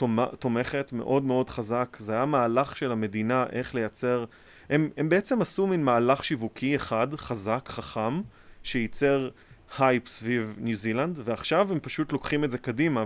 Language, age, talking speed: Hebrew, 30-49, 150 wpm